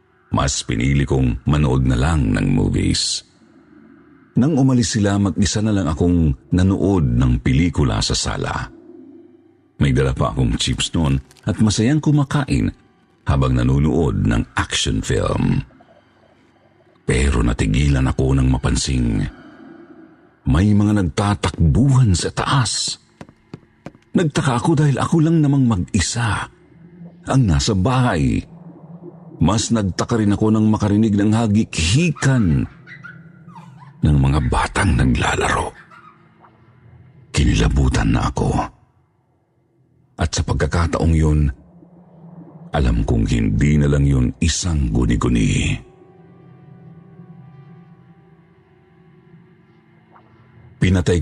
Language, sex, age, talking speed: Filipino, male, 50-69, 95 wpm